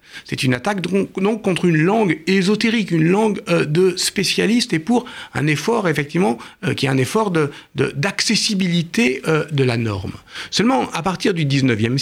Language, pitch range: French, 120-175 Hz